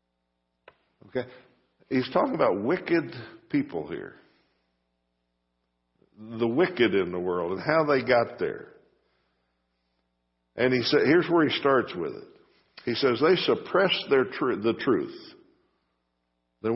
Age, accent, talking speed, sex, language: 60-79, American, 125 wpm, male, English